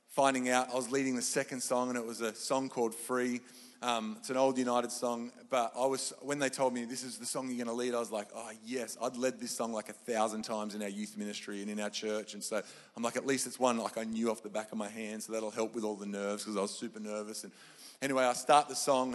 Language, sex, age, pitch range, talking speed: English, male, 30-49, 115-140 Hz, 285 wpm